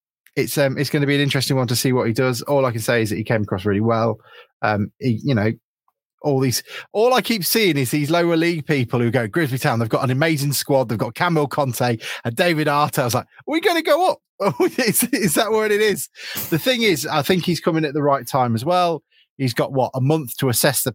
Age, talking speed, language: 20-39, 265 wpm, English